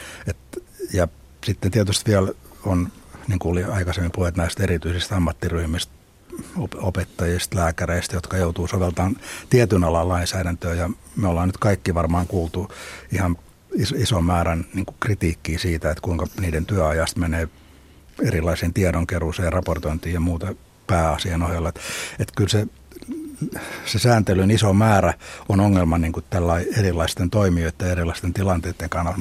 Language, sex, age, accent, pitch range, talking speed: Finnish, male, 60-79, native, 85-100 Hz, 130 wpm